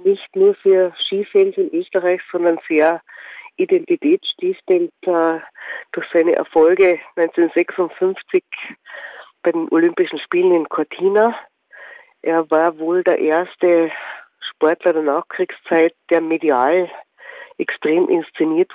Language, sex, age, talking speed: German, female, 50-69, 100 wpm